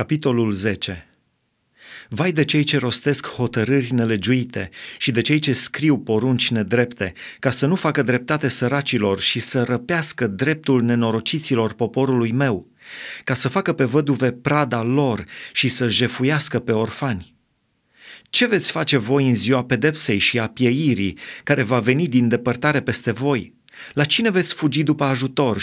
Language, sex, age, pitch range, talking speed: Romanian, male, 30-49, 110-140 Hz, 150 wpm